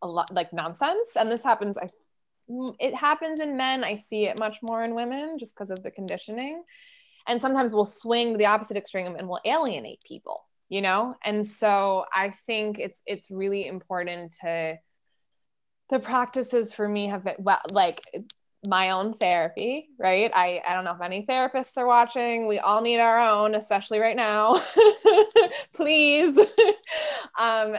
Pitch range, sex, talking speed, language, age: 180-235 Hz, female, 165 wpm, English, 20-39